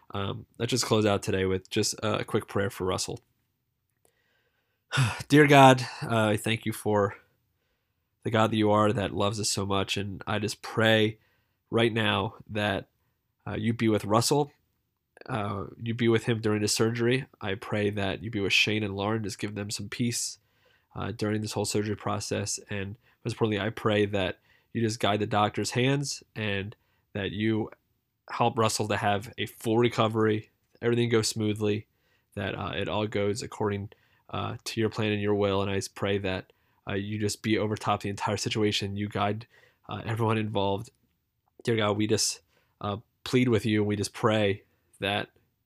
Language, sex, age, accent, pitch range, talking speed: English, male, 20-39, American, 100-115 Hz, 185 wpm